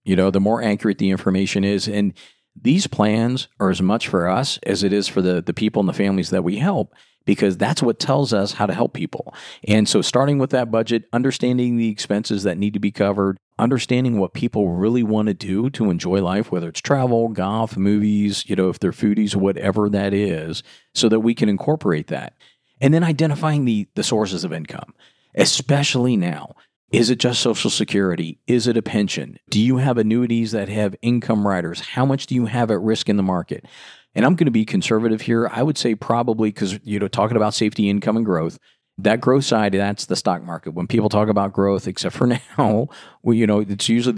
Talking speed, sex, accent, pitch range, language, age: 215 wpm, male, American, 100-120 Hz, English, 40-59